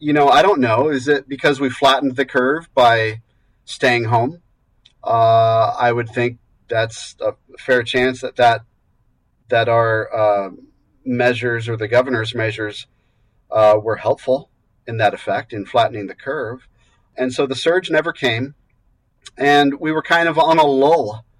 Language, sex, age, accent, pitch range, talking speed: English, male, 40-59, American, 115-140 Hz, 160 wpm